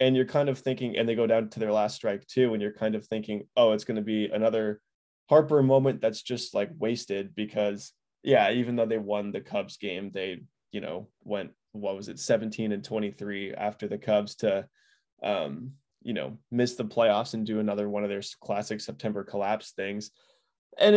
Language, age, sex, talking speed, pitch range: English, 20-39, male, 205 wpm, 105-125 Hz